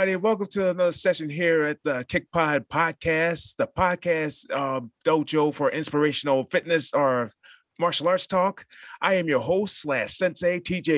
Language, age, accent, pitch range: English, 30-49, American, 120-165 Hz